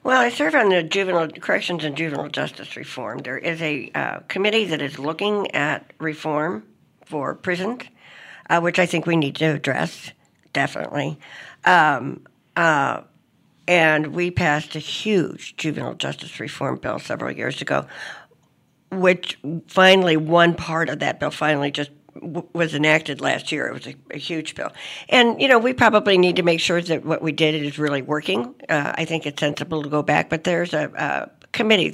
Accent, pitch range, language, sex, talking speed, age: American, 150-180 Hz, English, female, 175 wpm, 60-79